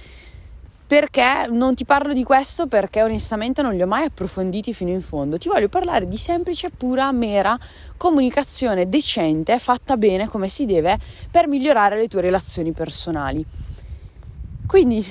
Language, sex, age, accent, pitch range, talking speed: Italian, female, 20-39, native, 180-260 Hz, 145 wpm